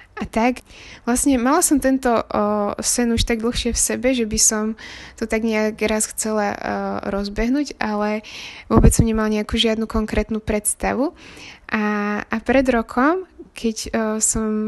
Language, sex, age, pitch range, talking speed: Slovak, female, 20-39, 205-230 Hz, 155 wpm